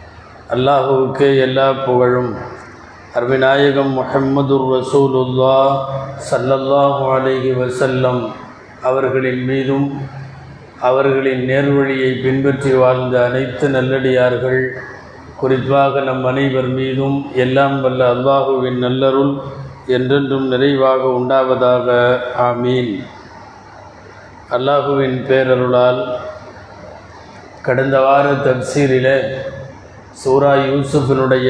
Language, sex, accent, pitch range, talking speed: Tamil, male, native, 125-135 Hz, 65 wpm